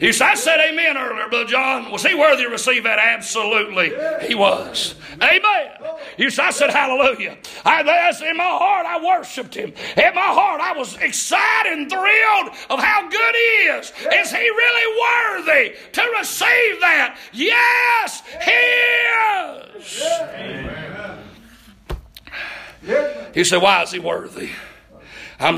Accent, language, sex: American, English, male